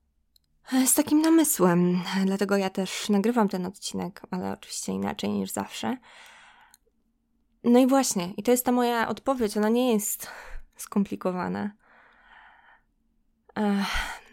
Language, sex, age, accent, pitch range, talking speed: Polish, female, 20-39, native, 190-230 Hz, 115 wpm